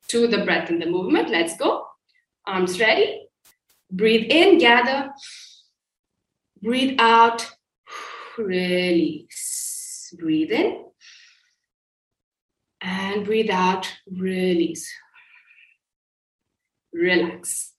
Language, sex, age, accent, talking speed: English, female, 20-39, Indian, 80 wpm